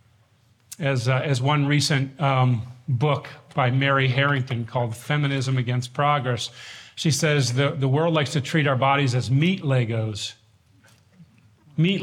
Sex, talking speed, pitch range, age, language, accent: male, 140 wpm, 125-170 Hz, 40-59, English, American